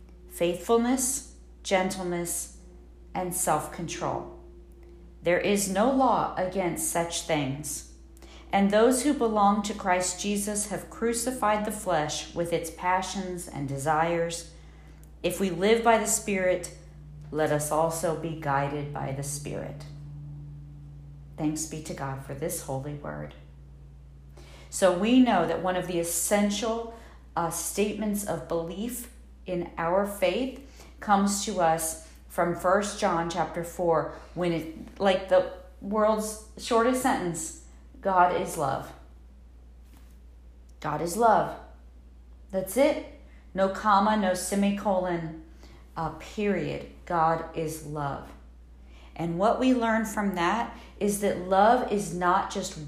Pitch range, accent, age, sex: 145-205 Hz, American, 50-69, female